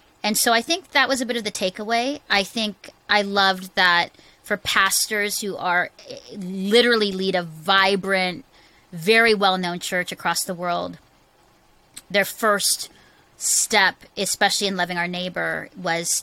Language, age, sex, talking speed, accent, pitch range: English, 30-49, female, 145 wpm, American, 170-200 Hz